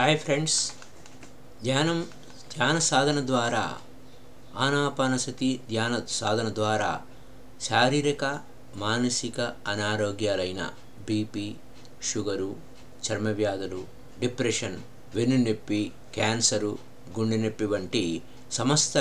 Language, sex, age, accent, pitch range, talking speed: Telugu, male, 60-79, native, 110-140 Hz, 75 wpm